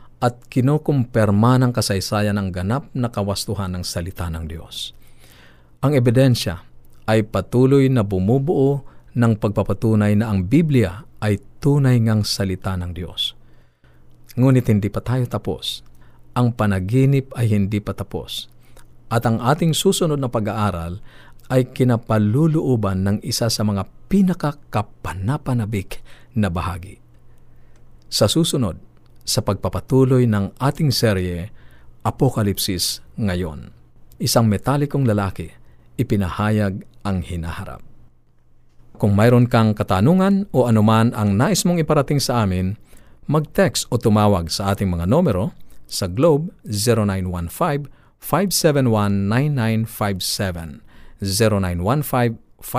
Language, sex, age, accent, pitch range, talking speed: Filipino, male, 50-69, native, 95-130 Hz, 105 wpm